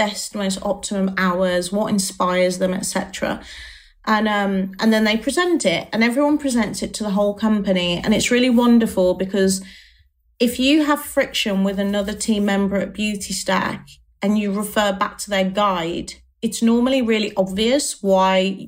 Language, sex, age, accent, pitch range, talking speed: English, female, 30-49, British, 190-230 Hz, 165 wpm